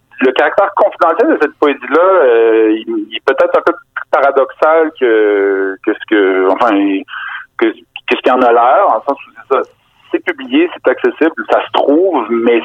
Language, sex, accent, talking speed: French, male, French, 185 wpm